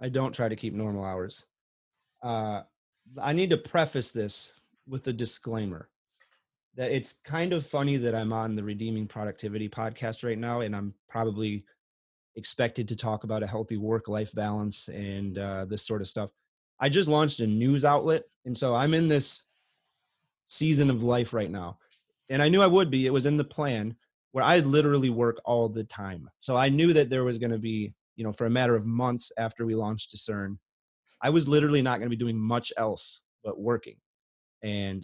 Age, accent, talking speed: 30-49, American, 195 wpm